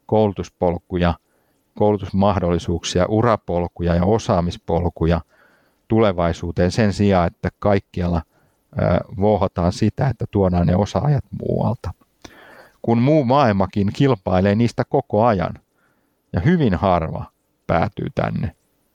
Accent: native